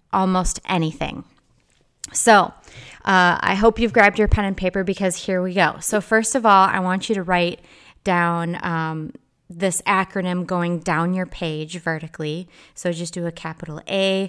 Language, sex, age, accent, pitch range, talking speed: English, female, 20-39, American, 165-190 Hz, 170 wpm